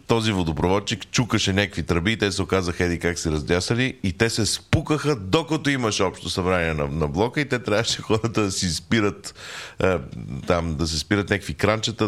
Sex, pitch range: male, 85-110 Hz